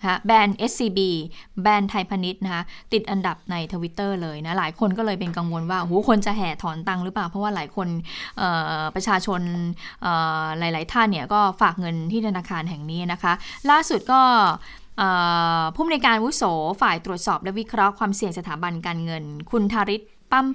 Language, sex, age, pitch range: Thai, female, 20-39, 175-215 Hz